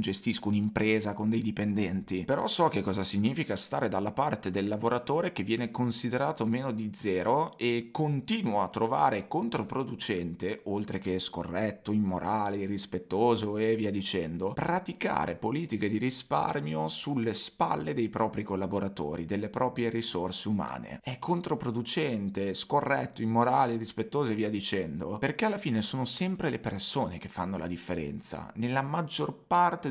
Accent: native